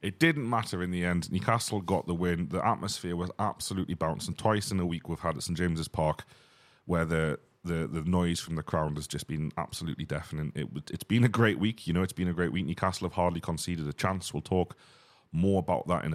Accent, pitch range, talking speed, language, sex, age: British, 80-95 Hz, 235 wpm, English, male, 30-49